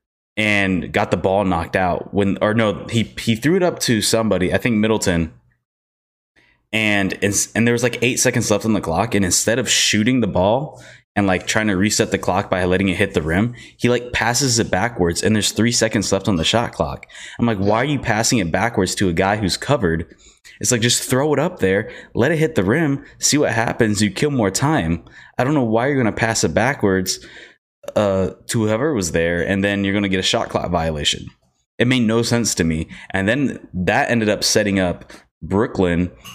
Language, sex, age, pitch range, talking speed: English, male, 20-39, 90-115 Hz, 225 wpm